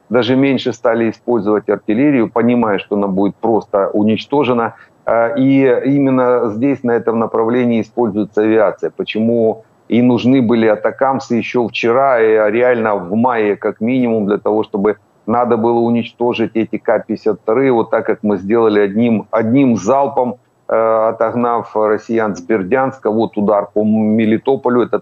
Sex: male